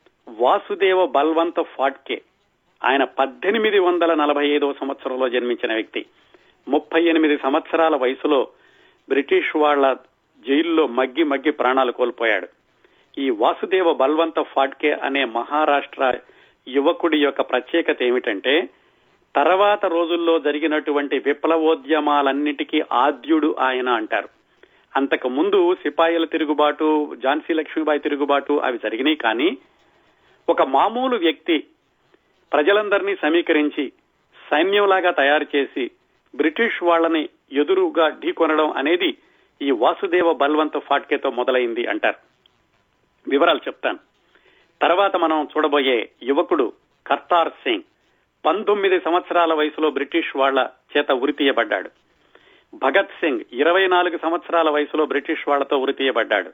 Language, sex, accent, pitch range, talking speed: Telugu, male, native, 145-180 Hz, 90 wpm